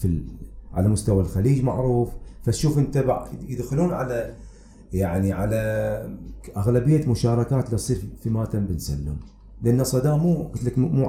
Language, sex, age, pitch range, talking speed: Arabic, male, 30-49, 100-125 Hz, 135 wpm